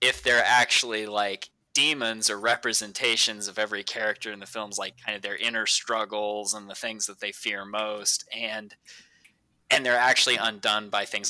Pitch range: 105-115 Hz